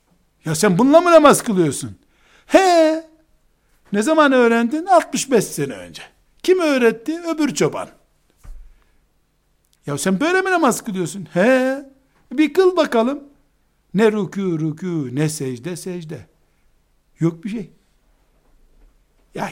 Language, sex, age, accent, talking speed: Turkish, male, 60-79, native, 115 wpm